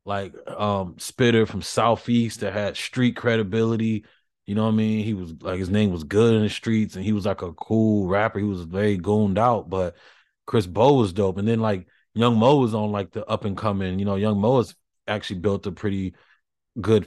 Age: 20-39